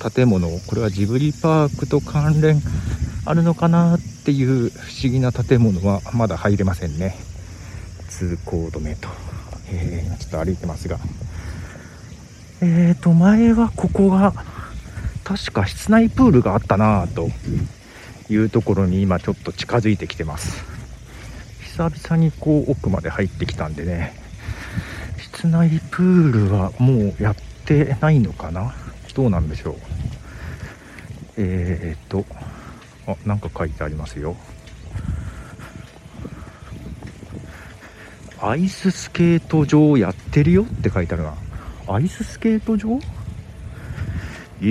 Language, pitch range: Japanese, 90-140 Hz